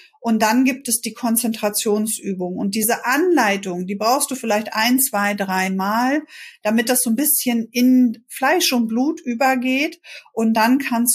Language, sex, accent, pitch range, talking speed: German, female, German, 200-245 Hz, 160 wpm